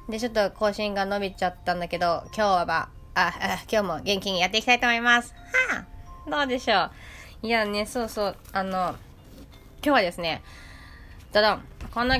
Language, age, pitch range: Japanese, 20-39, 155-220 Hz